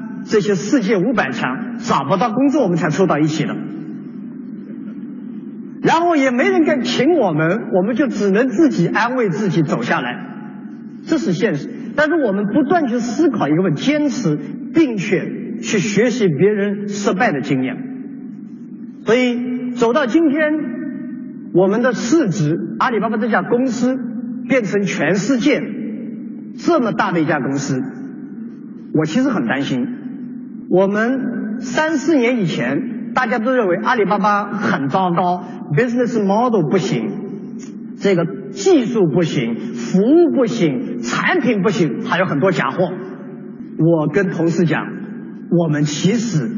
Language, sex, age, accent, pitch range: Chinese, male, 50-69, native, 195-250 Hz